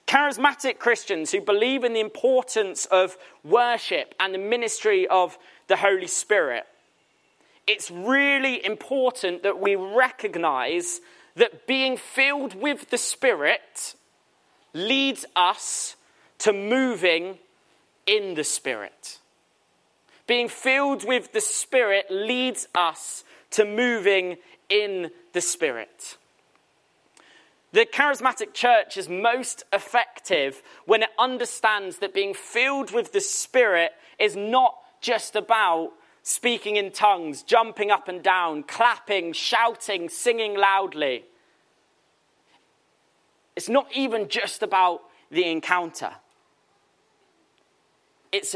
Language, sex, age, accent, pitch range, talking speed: English, male, 30-49, British, 190-260 Hz, 105 wpm